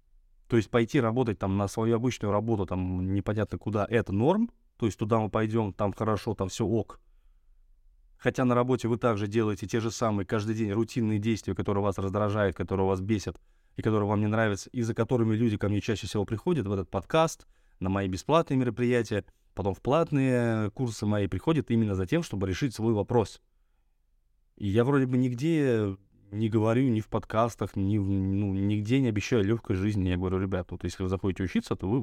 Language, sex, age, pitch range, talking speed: Russian, male, 20-39, 95-120 Hz, 195 wpm